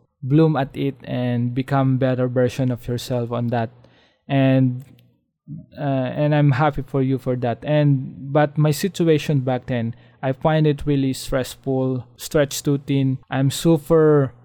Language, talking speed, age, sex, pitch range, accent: English, 150 wpm, 20-39, male, 125-150 Hz, Filipino